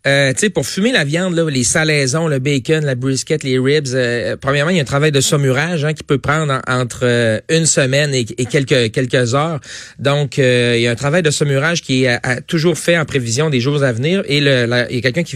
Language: French